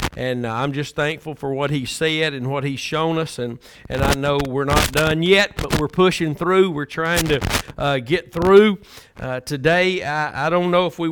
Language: English